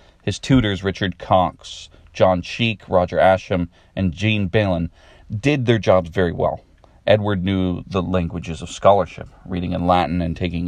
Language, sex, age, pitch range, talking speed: English, male, 40-59, 85-105 Hz, 150 wpm